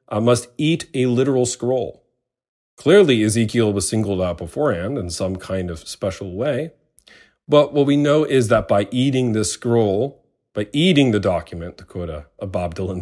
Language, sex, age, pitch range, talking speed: English, male, 40-59, 90-125 Hz, 175 wpm